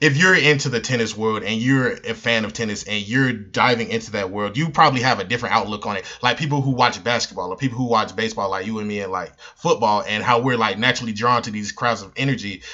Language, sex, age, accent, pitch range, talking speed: English, male, 20-39, American, 115-155 Hz, 255 wpm